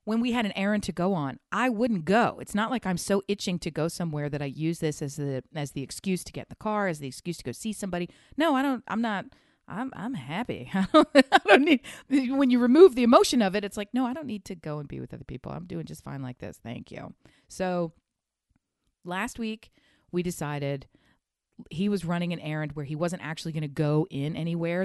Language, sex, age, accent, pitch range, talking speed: English, female, 40-59, American, 145-210 Hz, 245 wpm